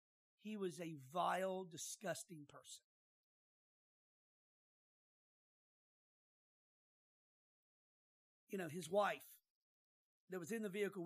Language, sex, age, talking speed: English, male, 50-69, 80 wpm